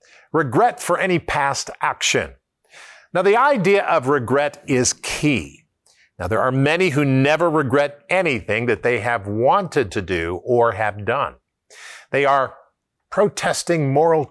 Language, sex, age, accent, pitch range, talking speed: English, male, 50-69, American, 125-180 Hz, 140 wpm